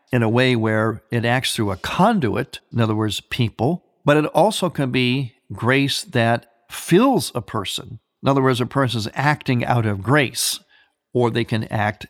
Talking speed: 185 wpm